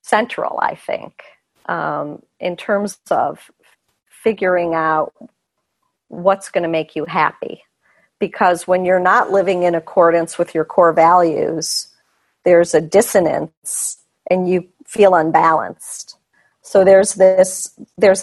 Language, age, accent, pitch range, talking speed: English, 40-59, American, 165-195 Hz, 120 wpm